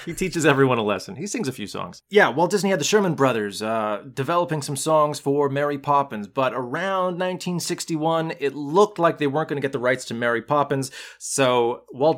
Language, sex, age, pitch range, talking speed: English, male, 30-49, 125-165 Hz, 205 wpm